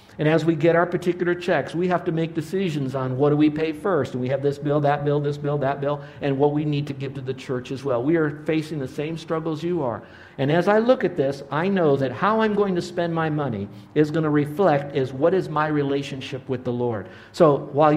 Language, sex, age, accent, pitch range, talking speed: English, male, 50-69, American, 140-175 Hz, 260 wpm